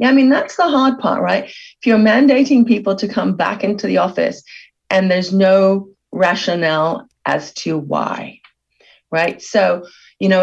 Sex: female